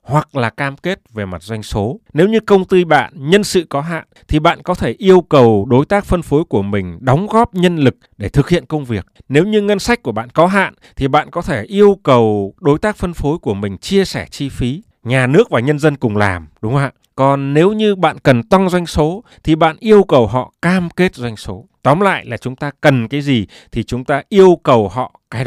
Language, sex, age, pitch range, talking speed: Vietnamese, male, 20-39, 110-165 Hz, 245 wpm